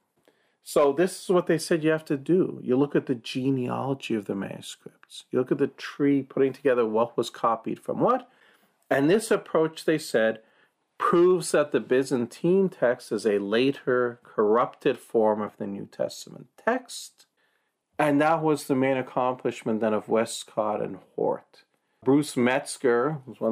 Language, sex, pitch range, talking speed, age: English, male, 115-145 Hz, 165 wpm, 40-59